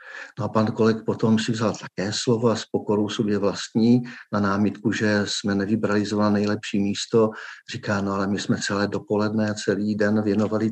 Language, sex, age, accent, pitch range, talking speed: Czech, male, 50-69, native, 105-115 Hz, 180 wpm